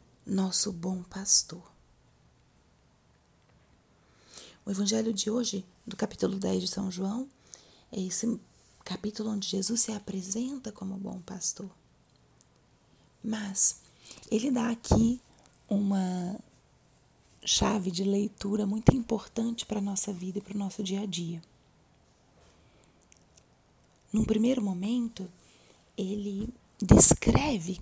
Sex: female